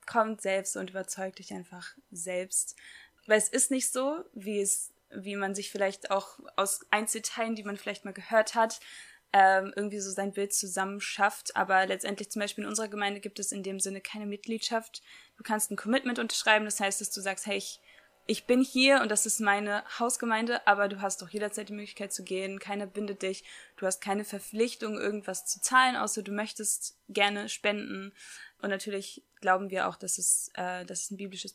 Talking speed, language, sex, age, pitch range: 195 wpm, German, female, 20-39, 195-215 Hz